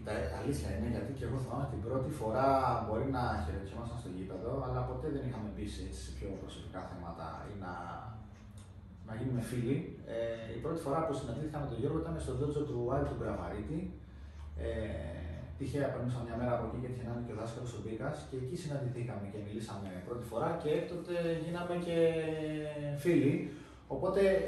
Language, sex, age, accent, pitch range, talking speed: Greek, male, 30-49, native, 115-195 Hz, 175 wpm